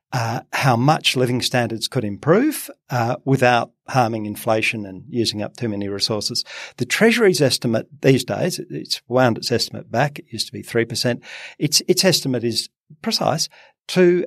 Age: 50-69